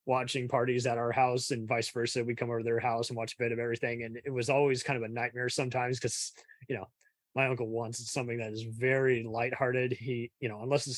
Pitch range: 120-140 Hz